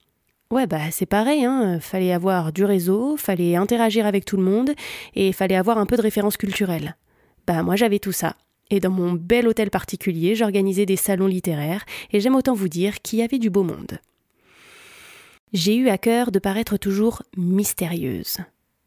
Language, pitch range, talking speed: French, 185-220 Hz, 180 wpm